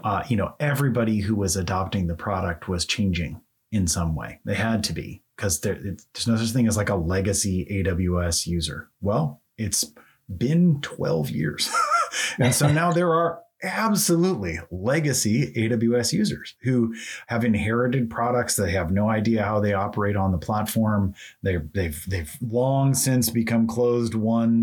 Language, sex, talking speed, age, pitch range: English, male, 160 wpm, 30-49, 95-115 Hz